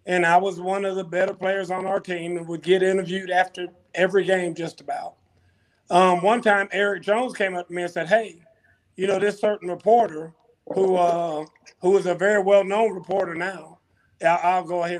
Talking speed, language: 200 wpm, English